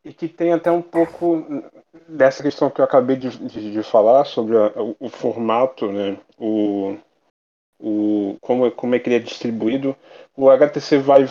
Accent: Brazilian